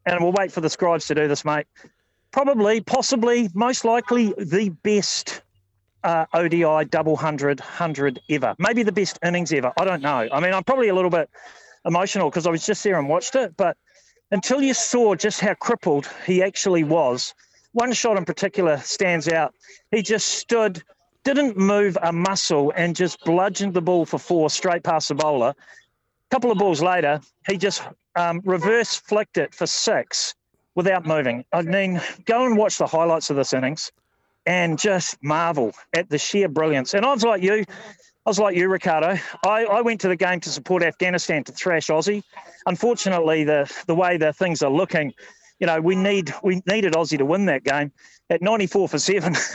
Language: English